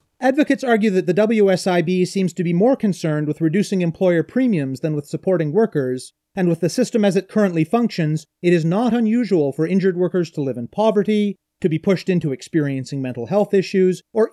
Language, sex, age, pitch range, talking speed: English, male, 30-49, 160-205 Hz, 195 wpm